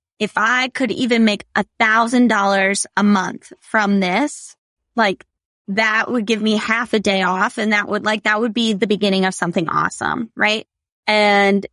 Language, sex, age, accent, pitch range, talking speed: English, female, 20-39, American, 195-235 Hz, 180 wpm